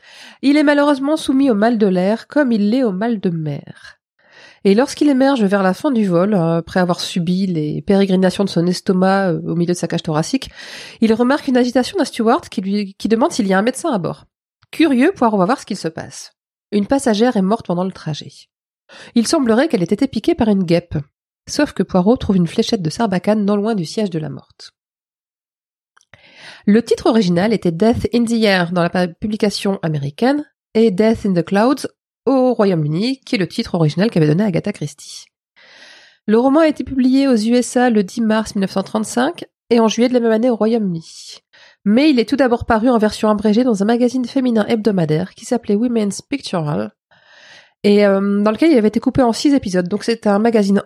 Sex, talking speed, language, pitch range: female, 205 wpm, French, 190-245 Hz